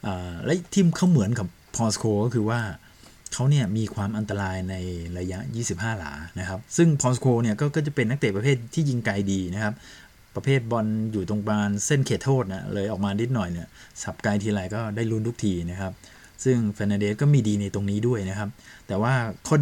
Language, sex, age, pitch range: Thai, male, 20-39, 95-115 Hz